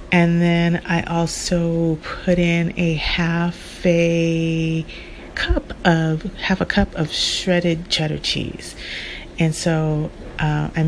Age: 30-49